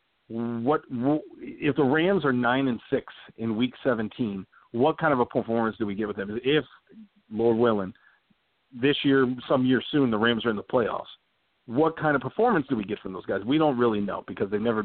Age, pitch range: 40-59, 120-150 Hz